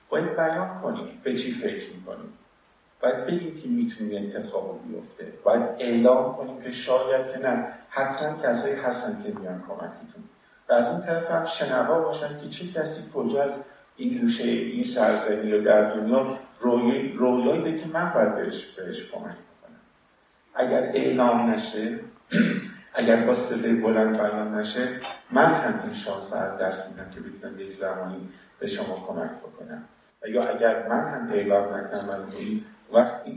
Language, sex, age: Persian, male, 50-69